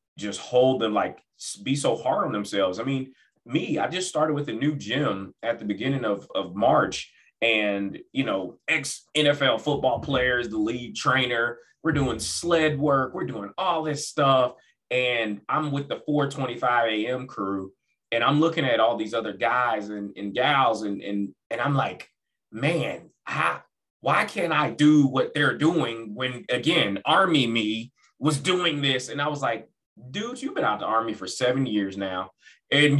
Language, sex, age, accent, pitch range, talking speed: English, male, 20-39, American, 115-160 Hz, 175 wpm